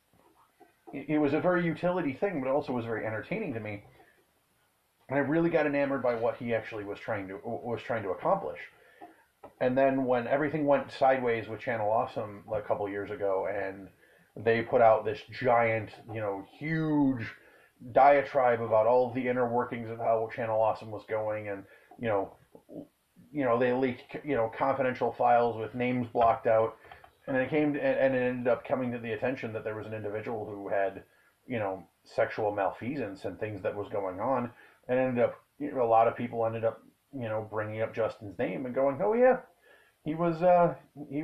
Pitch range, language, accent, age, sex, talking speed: 110-150 Hz, English, American, 30-49, male, 195 wpm